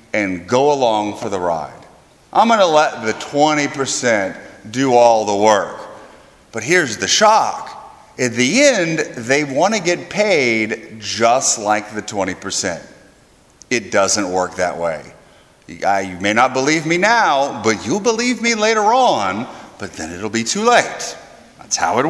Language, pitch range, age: English, 130-200 Hz, 40-59